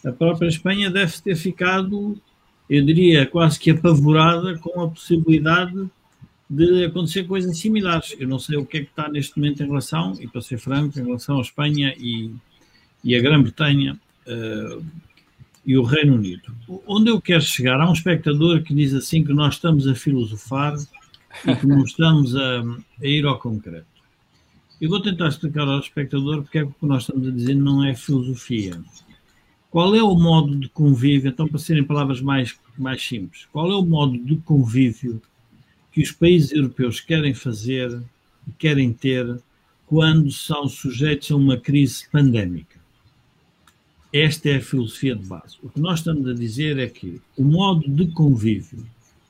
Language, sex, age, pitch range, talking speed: Portuguese, male, 50-69, 130-160 Hz, 170 wpm